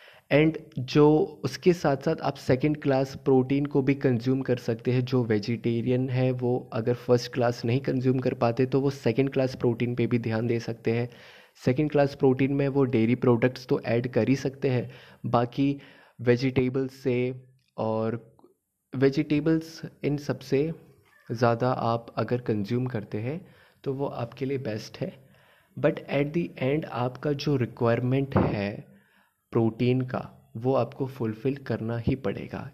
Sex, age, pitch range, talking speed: male, 20-39, 115-140 Hz, 155 wpm